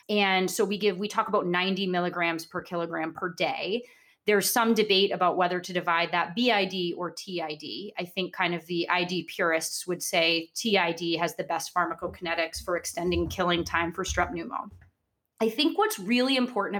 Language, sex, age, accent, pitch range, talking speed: English, female, 30-49, American, 175-230 Hz, 180 wpm